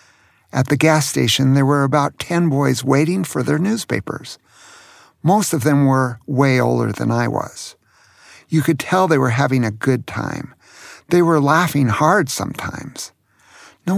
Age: 50-69